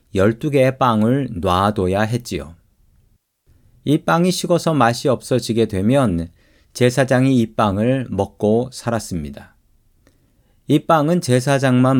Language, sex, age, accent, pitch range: Korean, male, 40-59, native, 95-130 Hz